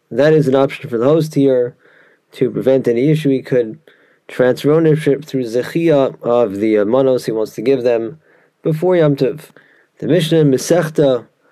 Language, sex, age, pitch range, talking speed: English, male, 20-39, 125-150 Hz, 170 wpm